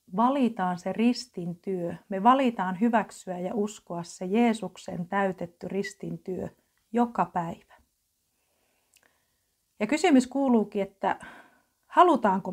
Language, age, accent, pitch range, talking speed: Finnish, 40-59, native, 185-235 Hz, 90 wpm